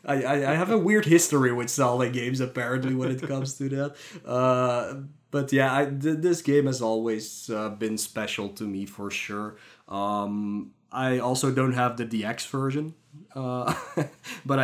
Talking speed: 170 wpm